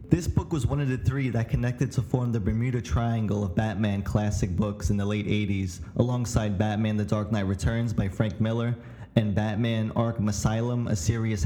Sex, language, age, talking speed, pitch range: male, English, 20-39, 195 wpm, 105-125 Hz